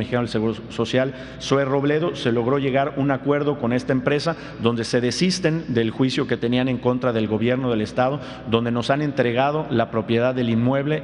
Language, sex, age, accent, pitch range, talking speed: Spanish, male, 50-69, Mexican, 120-140 Hz, 190 wpm